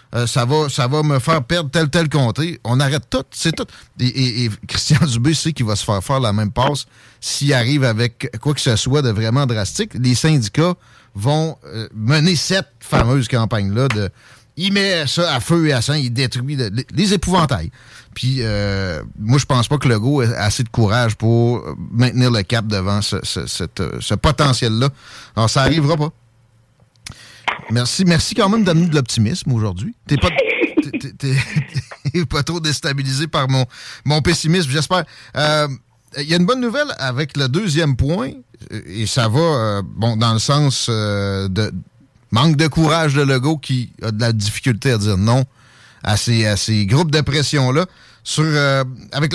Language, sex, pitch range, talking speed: French, male, 115-155 Hz, 190 wpm